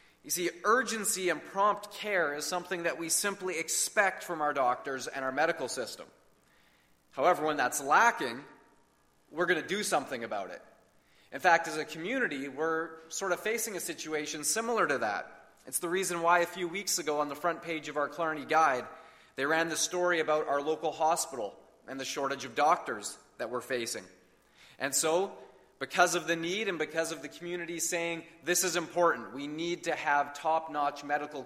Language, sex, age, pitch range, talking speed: English, male, 30-49, 140-170 Hz, 185 wpm